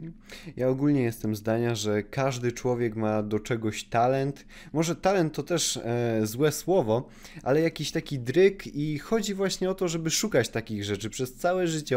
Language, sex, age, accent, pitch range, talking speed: Polish, male, 20-39, native, 120-160 Hz, 170 wpm